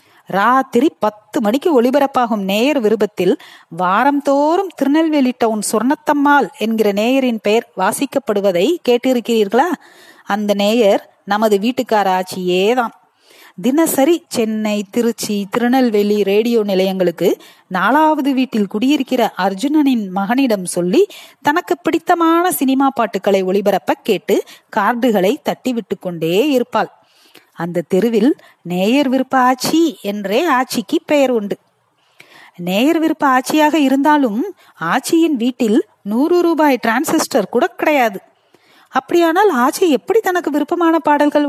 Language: Tamil